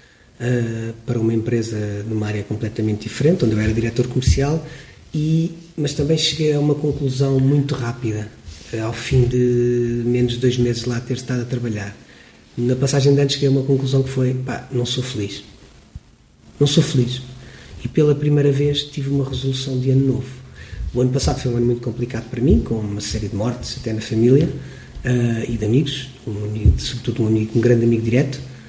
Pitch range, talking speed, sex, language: 120-145 Hz, 195 wpm, male, Portuguese